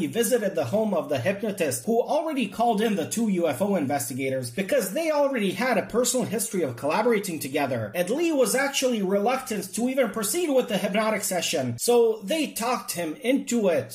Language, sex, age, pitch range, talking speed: English, male, 30-49, 170-245 Hz, 180 wpm